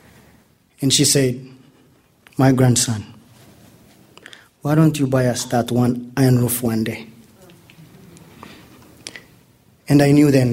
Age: 30-49